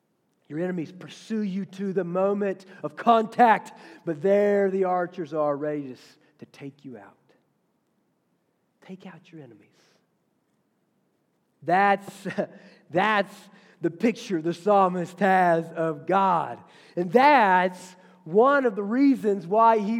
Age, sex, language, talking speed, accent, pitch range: 40-59, male, English, 120 wpm, American, 145-200 Hz